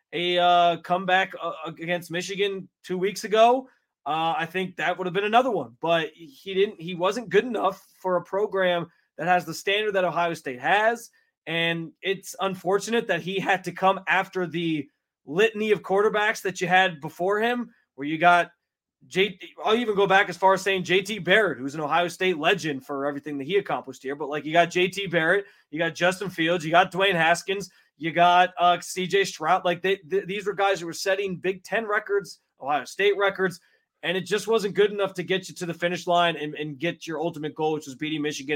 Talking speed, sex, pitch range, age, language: 210 wpm, male, 165-195 Hz, 20-39, English